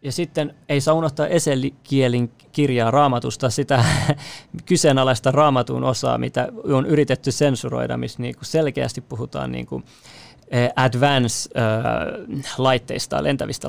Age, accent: 30-49, native